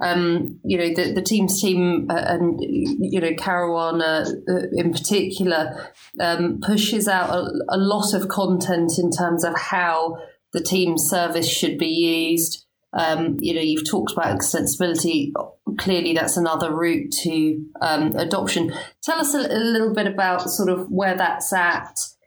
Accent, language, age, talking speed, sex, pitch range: British, English, 30-49, 150 wpm, female, 165-185 Hz